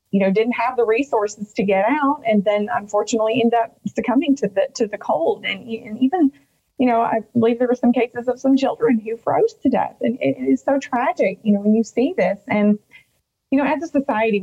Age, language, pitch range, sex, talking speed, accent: 30-49, English, 205-250 Hz, female, 230 wpm, American